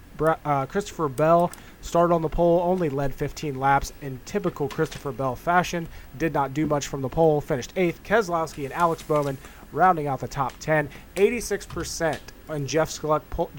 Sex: male